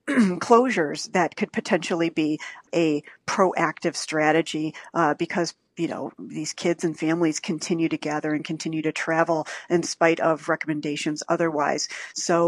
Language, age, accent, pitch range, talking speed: English, 40-59, American, 155-175 Hz, 140 wpm